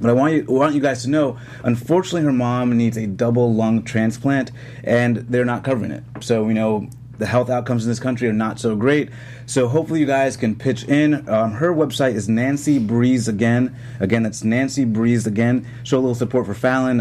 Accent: American